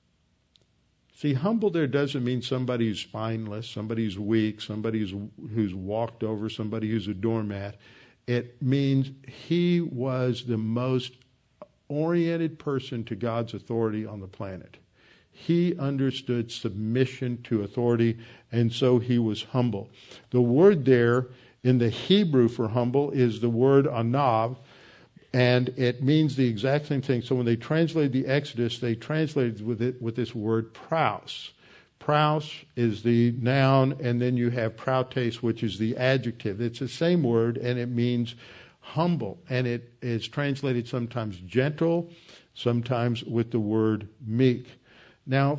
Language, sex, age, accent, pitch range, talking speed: English, male, 50-69, American, 115-140 Hz, 145 wpm